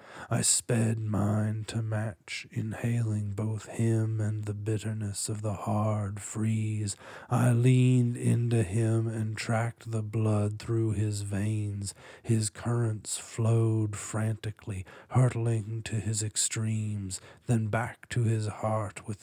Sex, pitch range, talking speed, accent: male, 100-115 Hz, 125 wpm, American